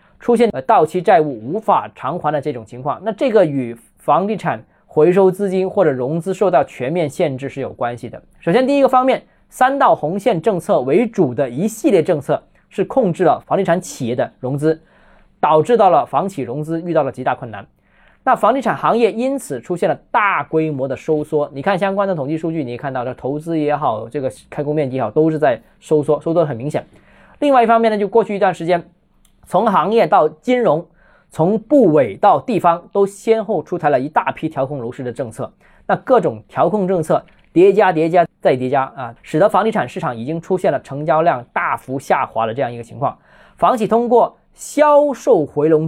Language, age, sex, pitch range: Chinese, 20-39, male, 150-205 Hz